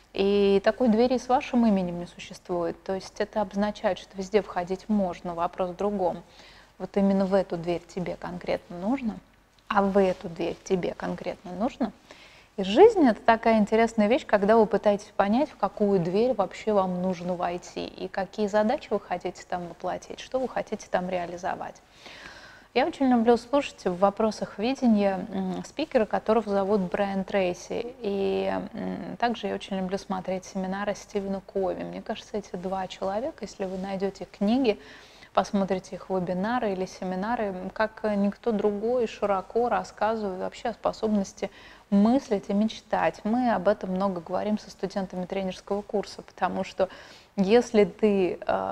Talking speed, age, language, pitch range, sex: 155 wpm, 20-39, Russian, 190-220 Hz, female